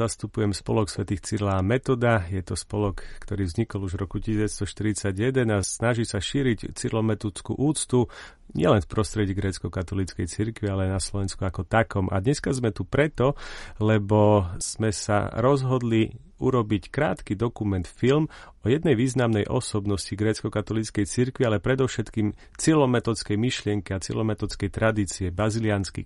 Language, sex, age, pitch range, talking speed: Slovak, male, 40-59, 100-125 Hz, 135 wpm